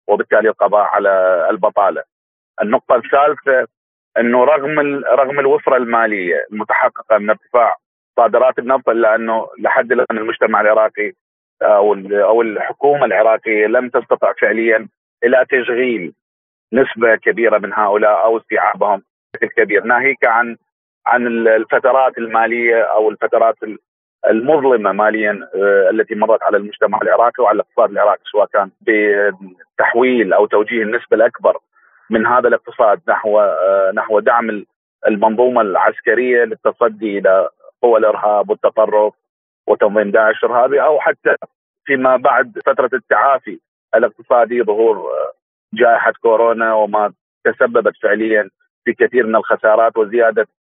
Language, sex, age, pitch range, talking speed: Arabic, male, 40-59, 105-140 Hz, 110 wpm